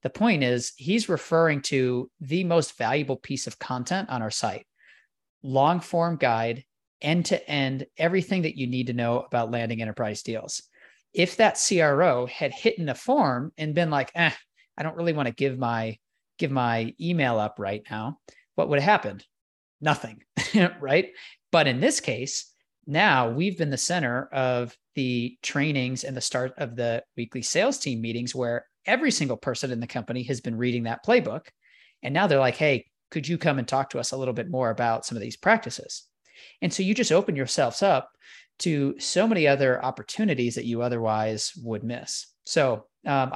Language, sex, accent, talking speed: English, male, American, 185 wpm